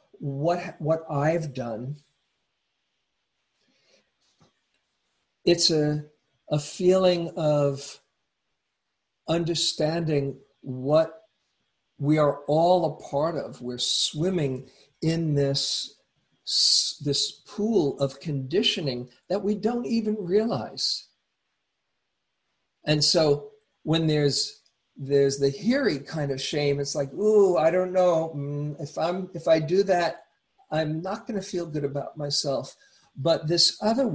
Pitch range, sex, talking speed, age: 135-170 Hz, male, 110 wpm, 50-69